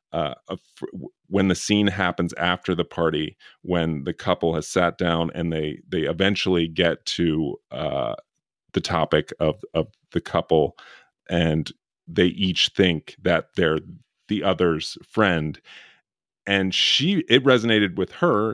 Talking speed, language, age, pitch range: 135 wpm, English, 30-49, 85-100 Hz